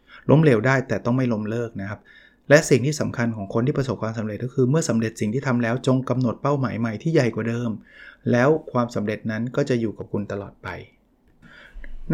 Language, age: Thai, 20-39